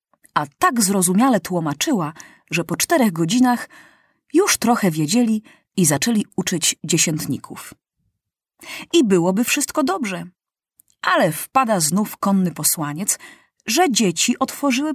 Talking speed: 110 wpm